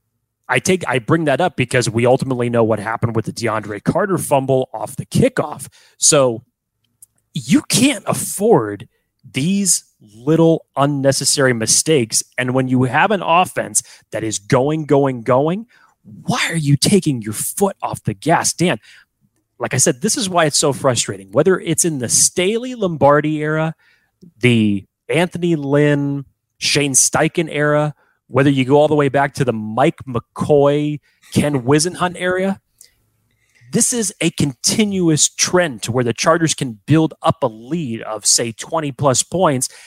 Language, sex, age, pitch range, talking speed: English, male, 30-49, 120-170 Hz, 155 wpm